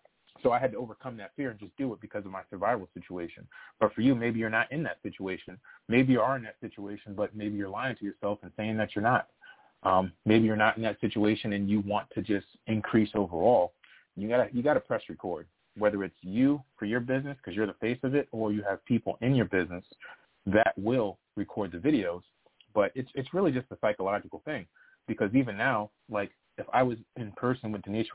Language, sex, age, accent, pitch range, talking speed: English, male, 30-49, American, 100-120 Hz, 225 wpm